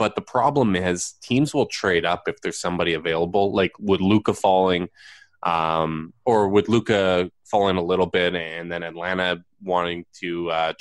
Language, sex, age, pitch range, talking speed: English, male, 20-39, 85-100 Hz, 165 wpm